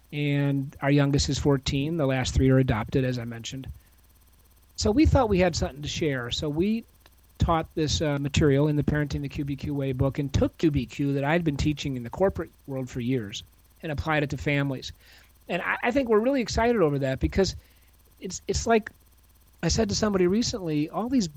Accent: American